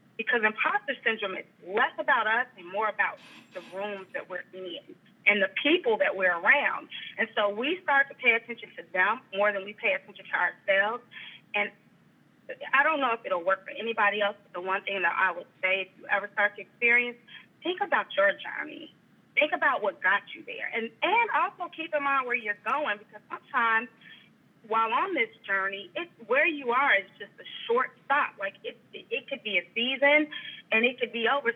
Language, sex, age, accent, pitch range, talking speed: English, female, 30-49, American, 195-260 Hz, 205 wpm